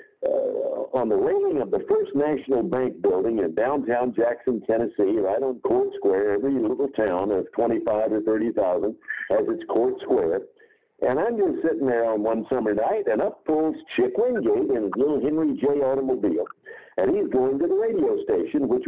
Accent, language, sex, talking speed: American, English, male, 180 wpm